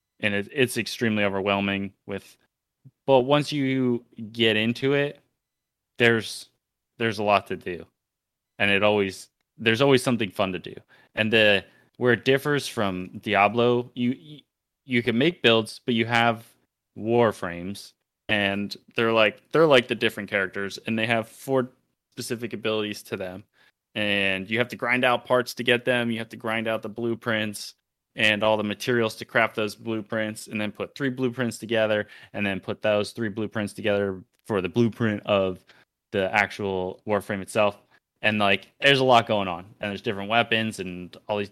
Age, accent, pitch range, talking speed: 20-39, American, 100-120 Hz, 170 wpm